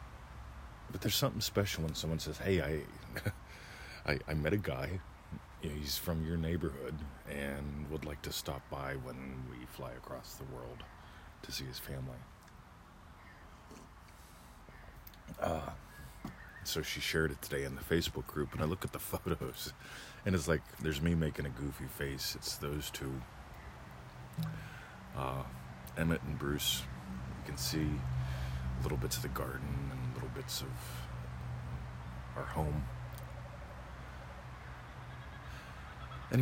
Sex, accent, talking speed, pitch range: male, American, 130 wpm, 65-85 Hz